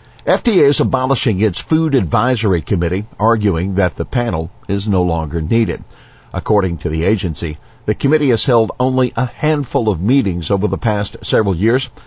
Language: English